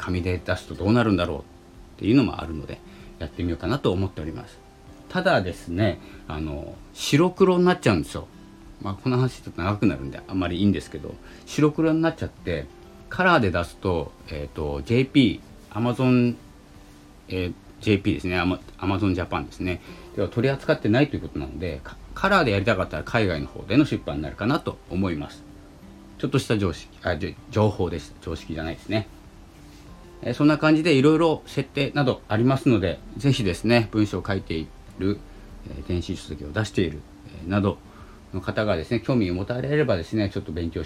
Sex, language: male, Japanese